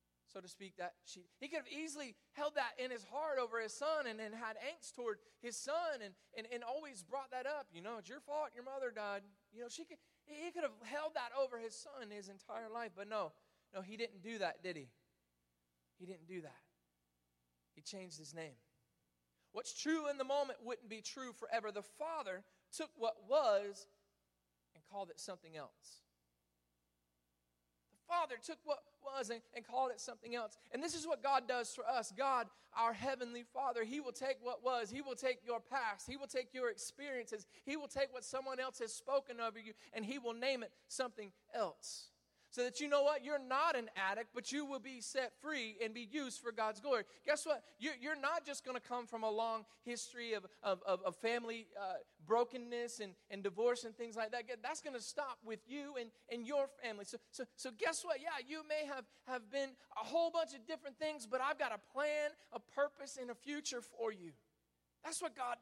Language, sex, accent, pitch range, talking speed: English, male, American, 210-275 Hz, 205 wpm